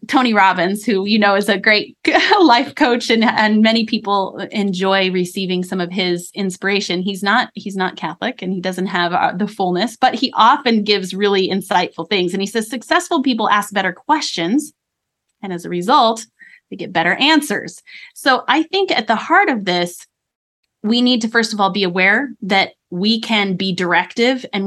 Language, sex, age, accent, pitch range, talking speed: English, female, 20-39, American, 185-235 Hz, 185 wpm